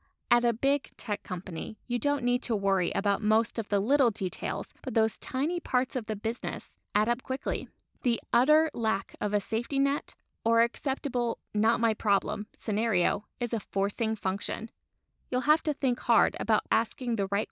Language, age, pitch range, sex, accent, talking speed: English, 20-39, 205-265 Hz, female, American, 170 wpm